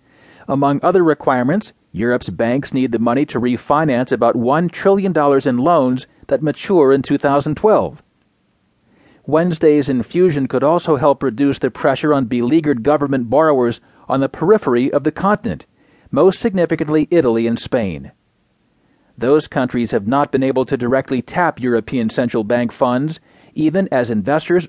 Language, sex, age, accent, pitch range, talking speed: English, male, 40-59, American, 125-160 Hz, 140 wpm